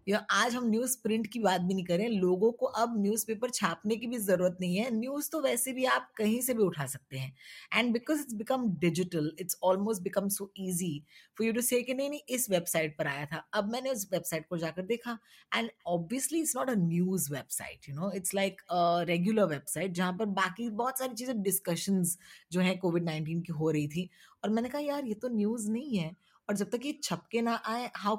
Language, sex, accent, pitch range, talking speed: Hindi, female, native, 170-230 Hz, 220 wpm